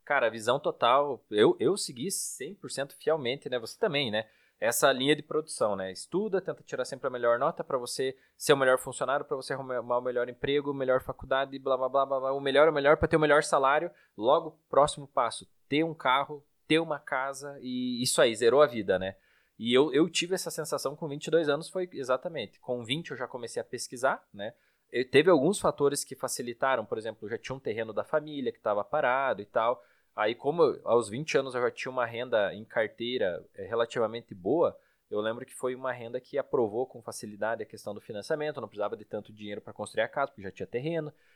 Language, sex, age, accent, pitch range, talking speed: Portuguese, male, 20-39, Brazilian, 125-160 Hz, 215 wpm